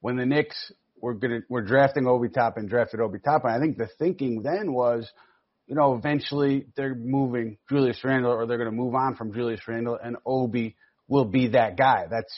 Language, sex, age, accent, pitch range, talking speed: English, male, 30-49, American, 115-135 Hz, 205 wpm